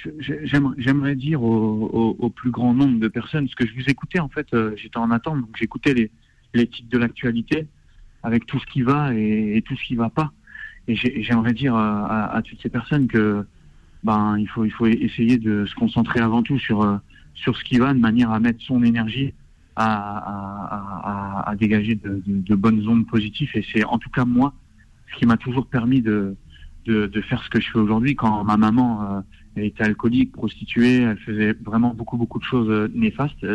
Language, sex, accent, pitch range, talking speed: French, male, French, 105-130 Hz, 200 wpm